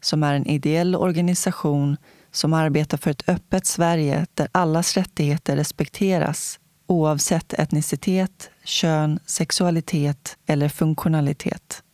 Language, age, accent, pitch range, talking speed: Swedish, 30-49, native, 150-180 Hz, 105 wpm